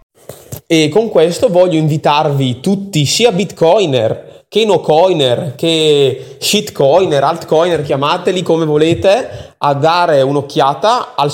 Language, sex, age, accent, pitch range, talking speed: Italian, male, 20-39, native, 135-180 Hz, 105 wpm